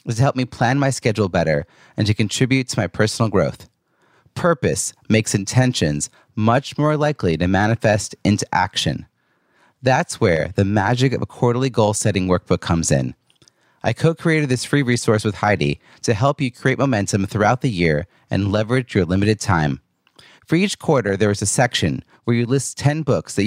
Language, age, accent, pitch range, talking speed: English, 30-49, American, 95-130 Hz, 175 wpm